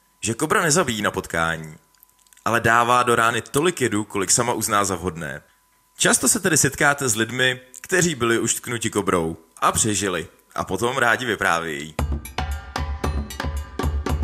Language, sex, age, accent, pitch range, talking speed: Czech, male, 20-39, native, 85-120 Hz, 135 wpm